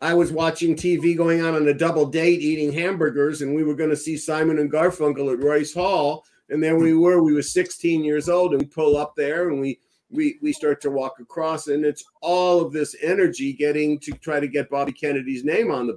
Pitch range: 140-175 Hz